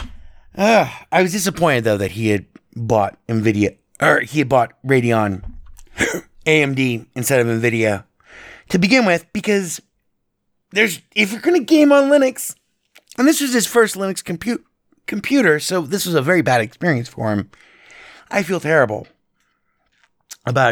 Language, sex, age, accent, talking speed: English, male, 30-49, American, 150 wpm